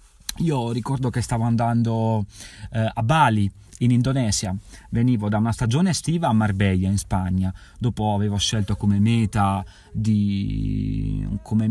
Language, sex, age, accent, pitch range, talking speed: Italian, male, 30-49, native, 100-120 Hz, 135 wpm